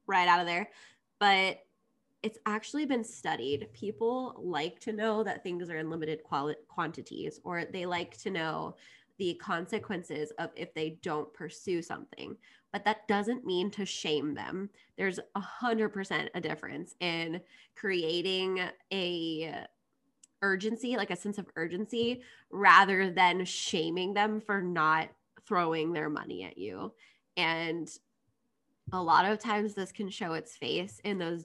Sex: female